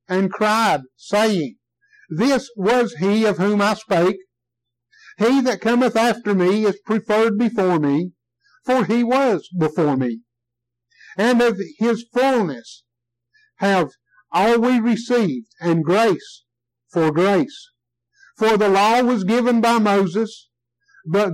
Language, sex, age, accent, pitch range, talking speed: English, male, 60-79, American, 145-235 Hz, 125 wpm